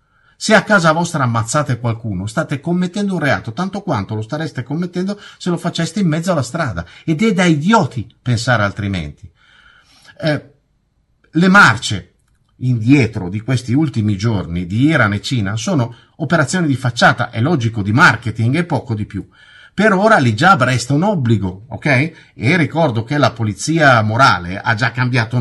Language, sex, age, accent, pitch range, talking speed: Italian, male, 50-69, native, 115-165 Hz, 165 wpm